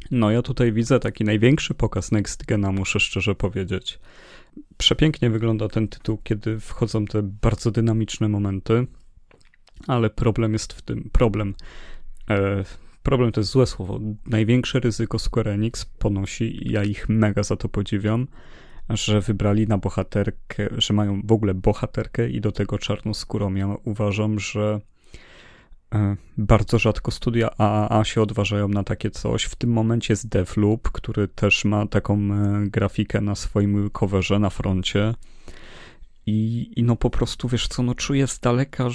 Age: 30-49